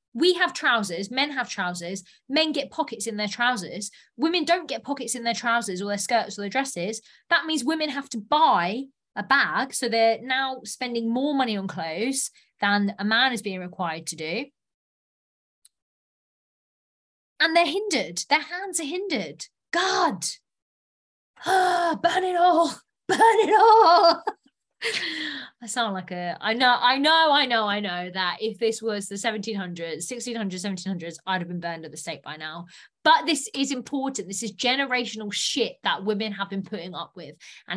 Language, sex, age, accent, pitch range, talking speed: English, female, 20-39, British, 200-275 Hz, 170 wpm